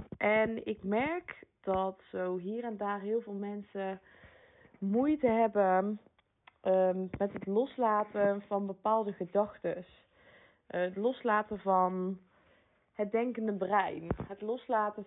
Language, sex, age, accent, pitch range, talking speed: Dutch, female, 20-39, Dutch, 185-220 Hz, 110 wpm